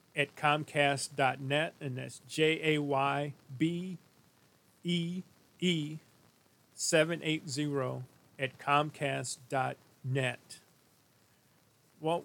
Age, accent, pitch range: 40-59, American, 130-155 Hz